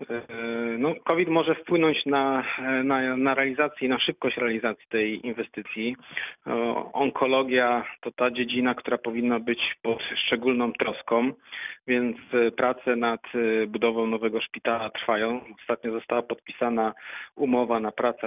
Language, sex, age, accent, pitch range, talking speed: Polish, male, 40-59, native, 110-120 Hz, 120 wpm